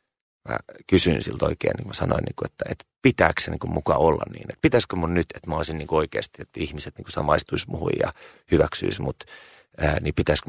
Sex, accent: male, native